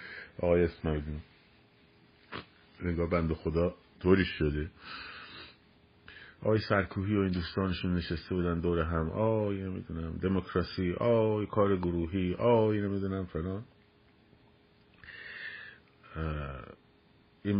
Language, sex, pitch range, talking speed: Persian, male, 85-105 Hz, 90 wpm